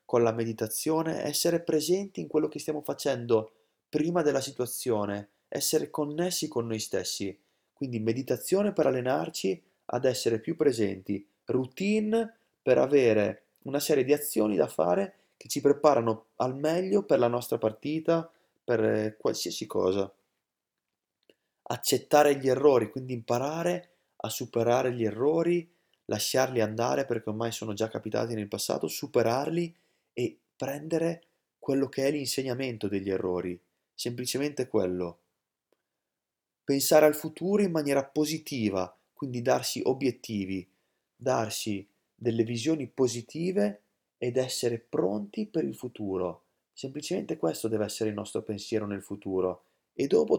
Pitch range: 110-150 Hz